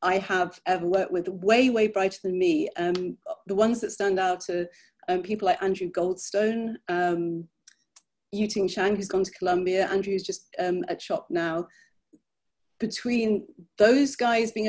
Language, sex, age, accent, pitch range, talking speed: English, female, 40-59, British, 190-225 Hz, 160 wpm